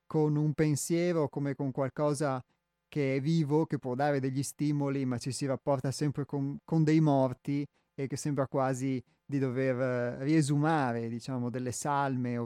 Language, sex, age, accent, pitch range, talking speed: Italian, male, 30-49, native, 135-165 Hz, 170 wpm